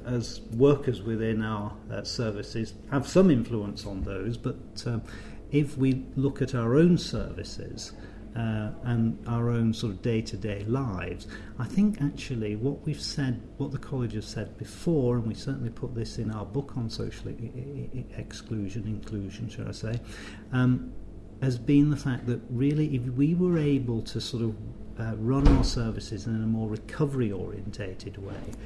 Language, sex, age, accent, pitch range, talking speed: English, male, 50-69, British, 105-130 Hz, 165 wpm